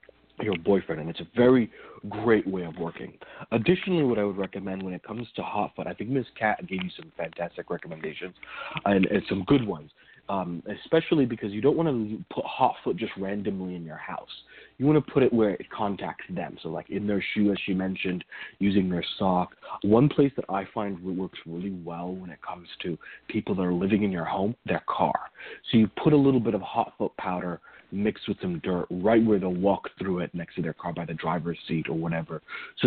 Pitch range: 90-115 Hz